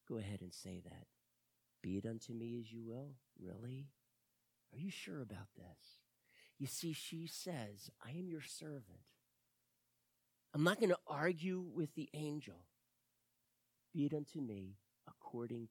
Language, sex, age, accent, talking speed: English, male, 40-59, American, 150 wpm